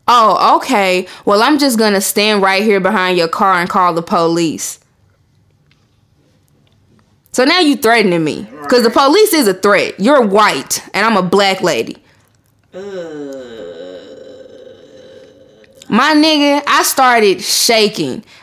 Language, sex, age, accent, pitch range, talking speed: English, female, 20-39, American, 200-285 Hz, 130 wpm